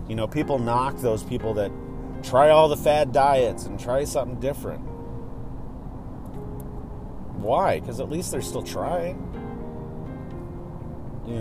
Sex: male